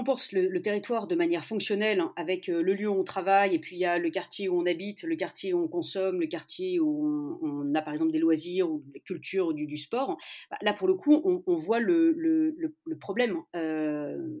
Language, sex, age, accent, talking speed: French, female, 40-59, French, 240 wpm